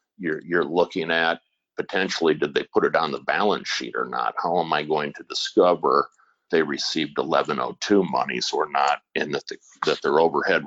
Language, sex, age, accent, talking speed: English, male, 50-69, American, 175 wpm